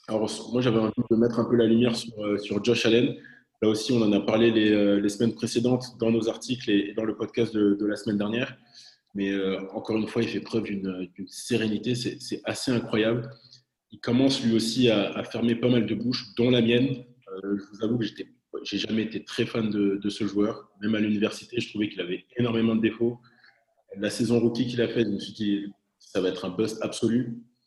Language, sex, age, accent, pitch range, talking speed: French, male, 20-39, French, 105-120 Hz, 230 wpm